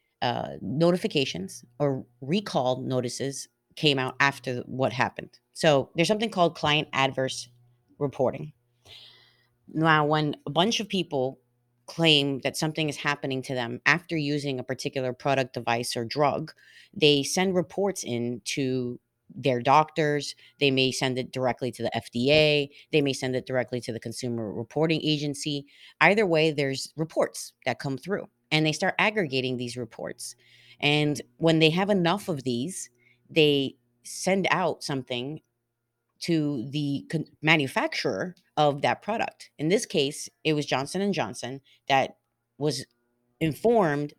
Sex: female